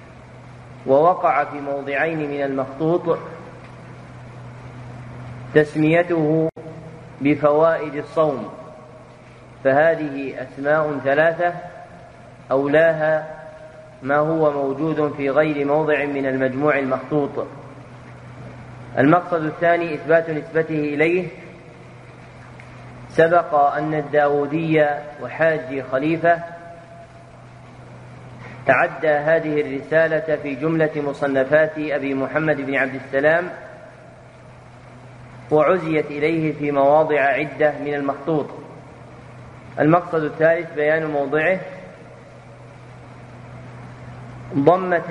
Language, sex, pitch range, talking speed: Arabic, male, 135-160 Hz, 70 wpm